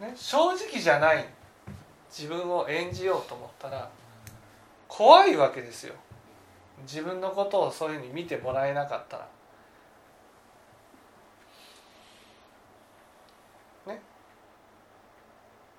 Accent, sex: native, male